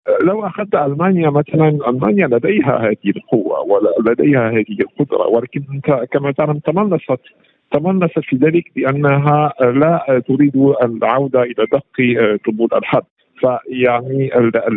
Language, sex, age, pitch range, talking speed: Arabic, male, 50-69, 120-155 Hz, 110 wpm